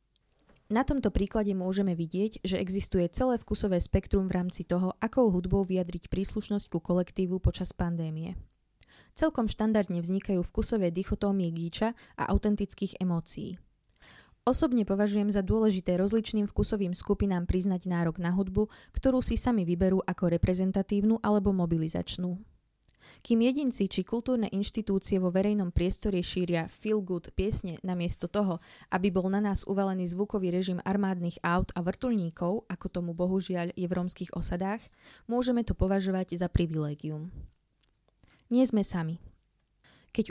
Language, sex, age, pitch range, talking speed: Slovak, female, 20-39, 180-210 Hz, 135 wpm